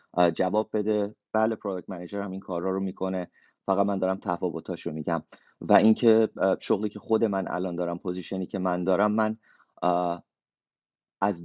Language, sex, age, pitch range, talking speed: Persian, male, 30-49, 90-110 Hz, 155 wpm